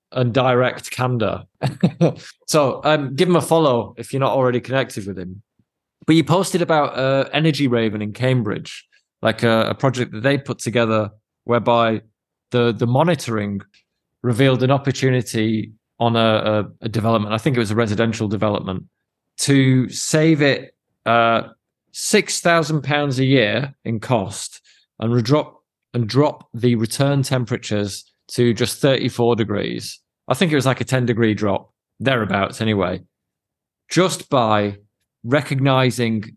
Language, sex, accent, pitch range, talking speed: English, male, British, 115-150 Hz, 140 wpm